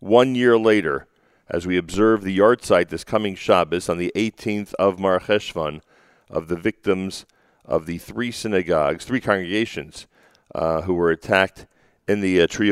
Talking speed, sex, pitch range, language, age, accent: 160 wpm, male, 85-105 Hz, English, 40-59, American